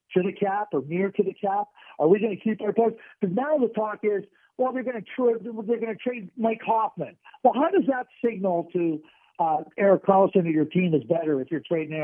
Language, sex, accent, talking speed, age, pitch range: English, male, American, 245 wpm, 50-69, 170-220 Hz